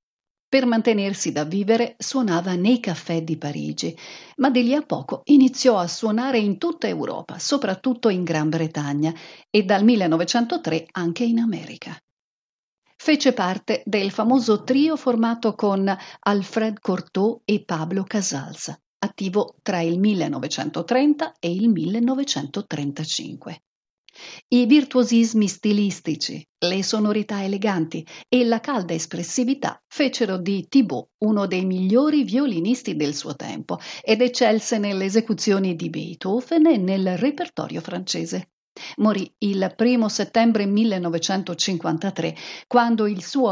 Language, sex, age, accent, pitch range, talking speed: Italian, female, 50-69, native, 175-240 Hz, 120 wpm